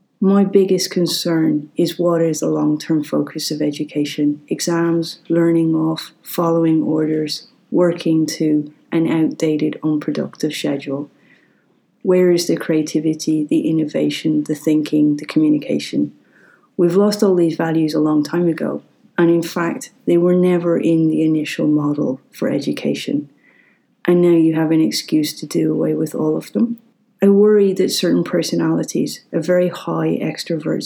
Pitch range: 155-175 Hz